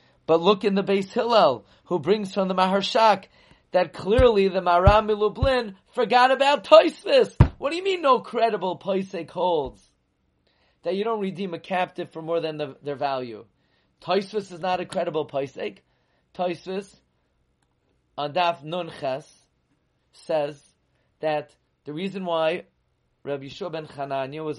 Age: 30-49